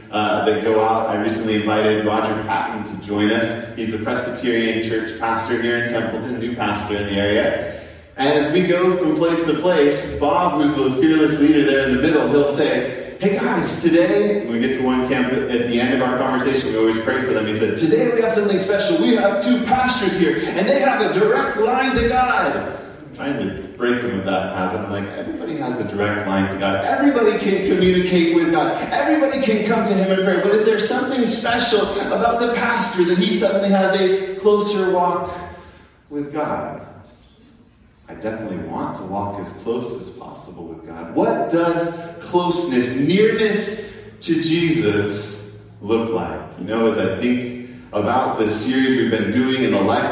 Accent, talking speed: American, 195 wpm